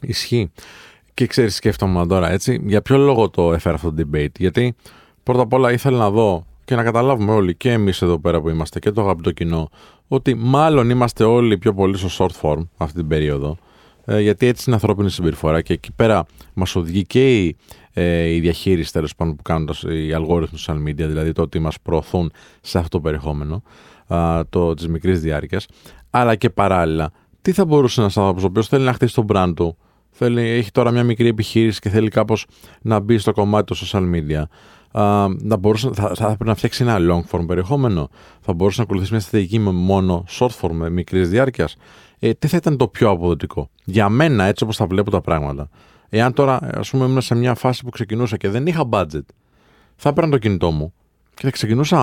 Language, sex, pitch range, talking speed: Greek, male, 85-120 Hz, 195 wpm